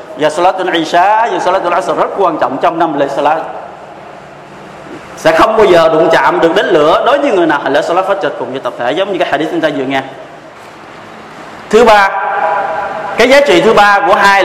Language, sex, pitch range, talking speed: Vietnamese, male, 165-200 Hz, 220 wpm